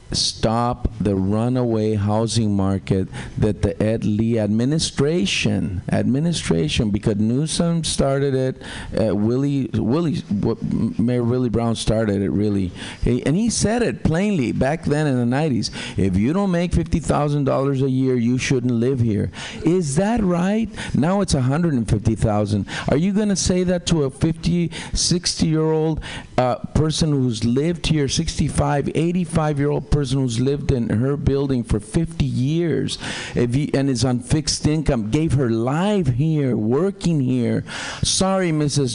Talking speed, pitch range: 150 wpm, 115-155 Hz